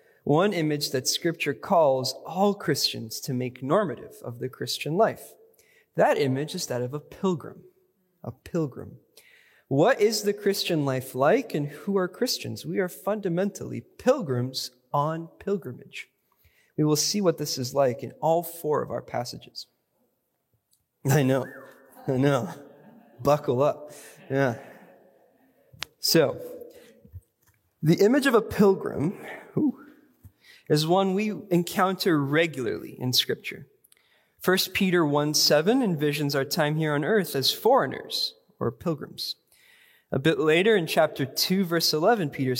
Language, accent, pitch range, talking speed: English, American, 135-205 Hz, 135 wpm